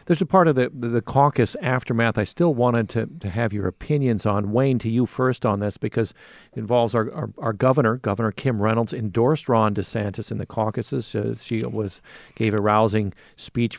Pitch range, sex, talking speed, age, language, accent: 110-135 Hz, male, 200 wpm, 50-69, English, American